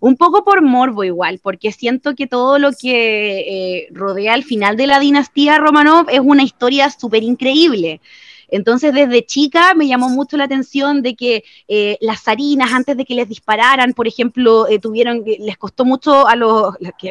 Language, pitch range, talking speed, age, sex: Spanish, 220-275 Hz, 180 wpm, 20-39, female